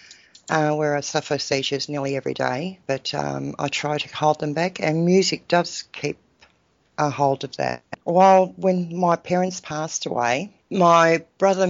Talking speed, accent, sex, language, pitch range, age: 165 wpm, Australian, female, English, 145-175 Hz, 60-79